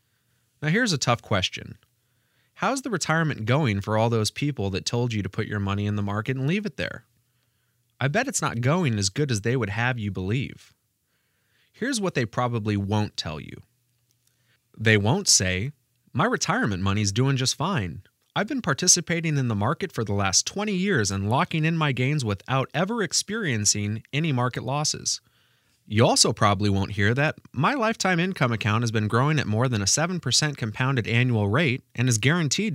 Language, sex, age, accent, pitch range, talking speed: English, male, 30-49, American, 110-150 Hz, 185 wpm